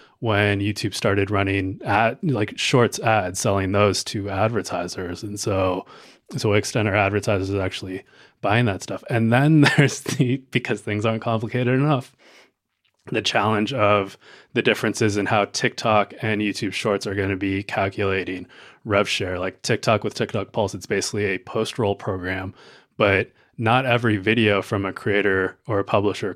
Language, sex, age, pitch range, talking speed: English, male, 20-39, 100-115 Hz, 155 wpm